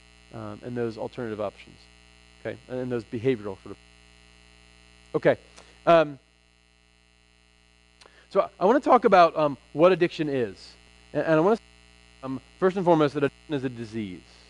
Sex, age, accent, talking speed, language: male, 40-59, American, 155 wpm, English